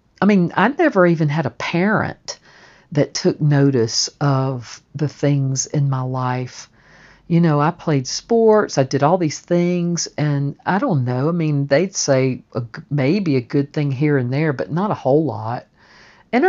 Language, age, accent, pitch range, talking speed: English, 50-69, American, 140-185 Hz, 175 wpm